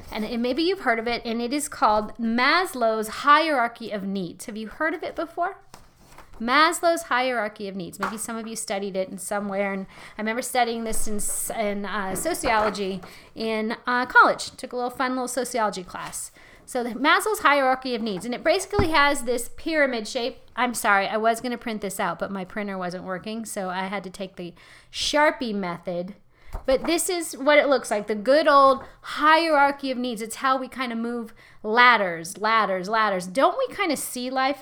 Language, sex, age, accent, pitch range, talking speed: English, female, 30-49, American, 210-285 Hz, 195 wpm